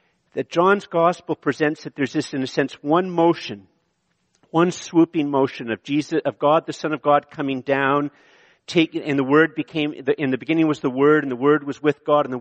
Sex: male